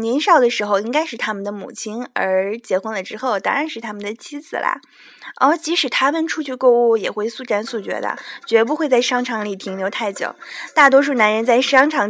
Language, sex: Chinese, female